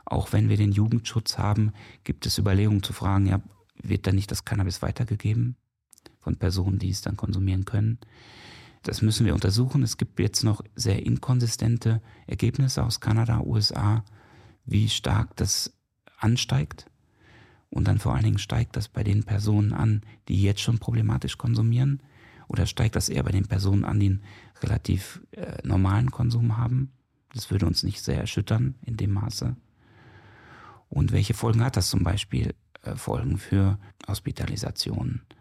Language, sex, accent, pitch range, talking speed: German, male, German, 100-120 Hz, 155 wpm